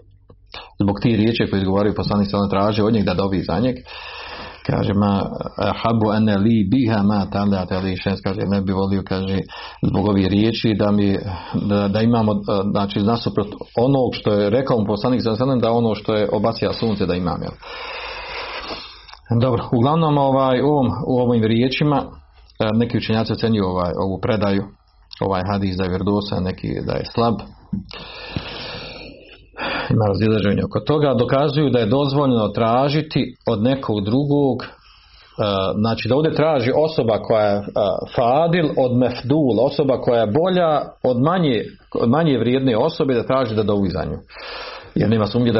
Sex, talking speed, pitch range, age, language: male, 135 wpm, 100-125 Hz, 40-59, Croatian